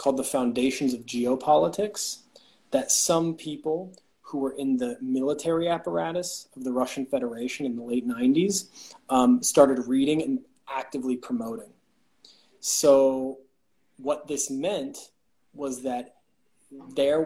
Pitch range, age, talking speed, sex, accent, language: 125-150 Hz, 20-39, 120 wpm, male, American, Finnish